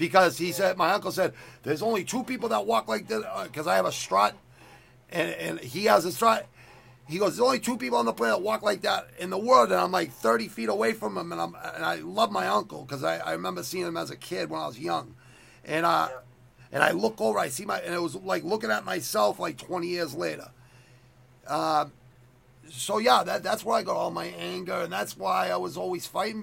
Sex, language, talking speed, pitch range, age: male, English, 245 wpm, 125-185 Hz, 40-59